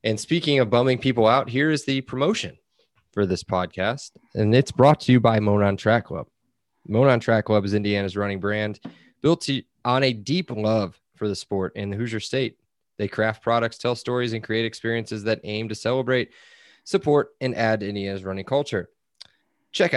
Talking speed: 185 wpm